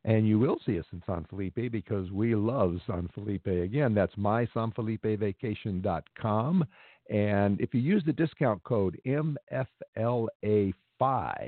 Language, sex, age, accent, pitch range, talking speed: English, male, 50-69, American, 95-120 Hz, 125 wpm